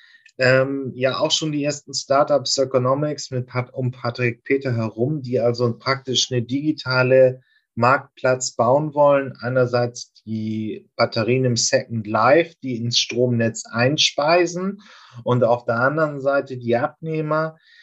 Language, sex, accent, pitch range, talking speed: German, male, German, 120-135 Hz, 130 wpm